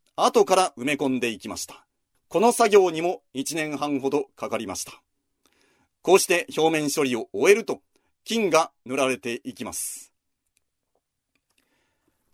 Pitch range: 140-205 Hz